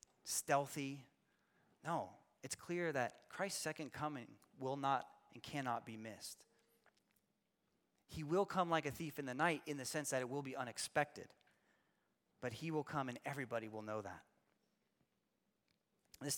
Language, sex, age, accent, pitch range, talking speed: English, male, 30-49, American, 130-165 Hz, 150 wpm